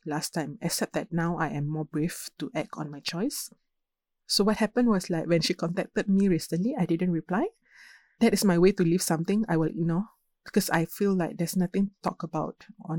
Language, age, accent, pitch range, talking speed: English, 20-39, Malaysian, 160-195 Hz, 220 wpm